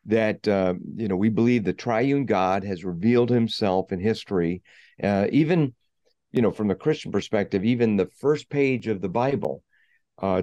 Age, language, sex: 50-69, English, male